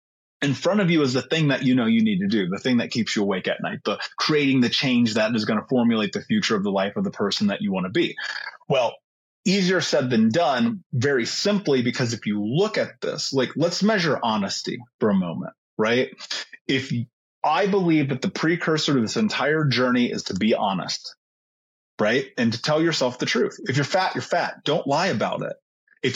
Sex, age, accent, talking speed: male, 30-49, American, 220 wpm